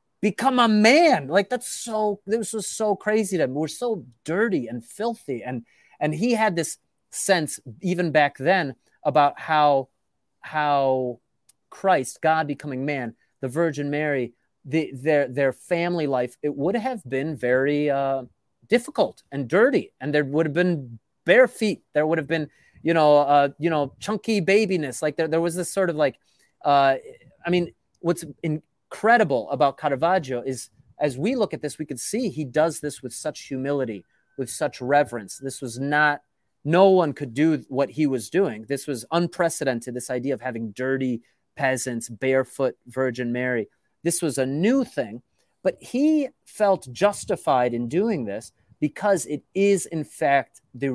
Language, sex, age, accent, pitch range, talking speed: English, male, 30-49, American, 130-175 Hz, 165 wpm